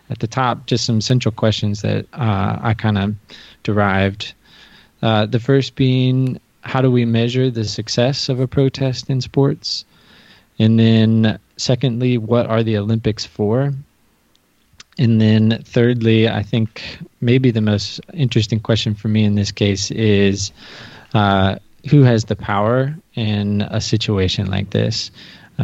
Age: 20-39